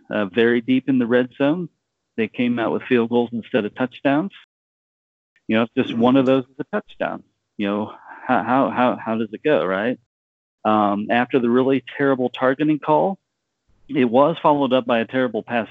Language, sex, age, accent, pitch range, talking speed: English, male, 40-59, American, 105-145 Hz, 185 wpm